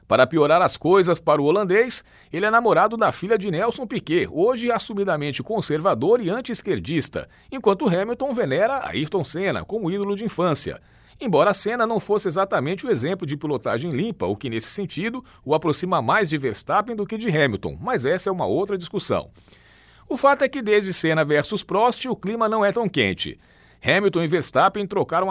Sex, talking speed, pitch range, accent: male, 185 wpm, 155-220 Hz, Brazilian